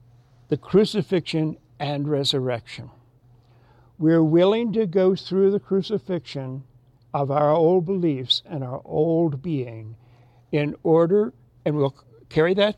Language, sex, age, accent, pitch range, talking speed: English, male, 60-79, American, 125-205 Hz, 115 wpm